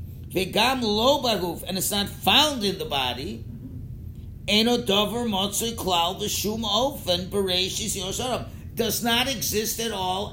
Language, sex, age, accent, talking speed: English, male, 50-69, American, 70 wpm